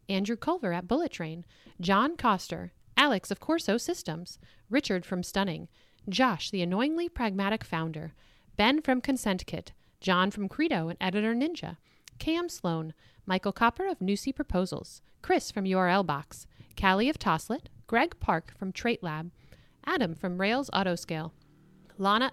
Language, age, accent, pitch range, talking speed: English, 40-59, American, 175-260 Hz, 140 wpm